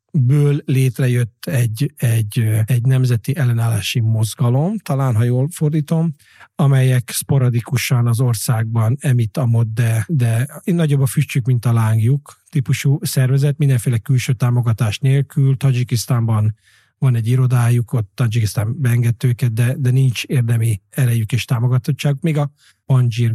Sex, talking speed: male, 130 wpm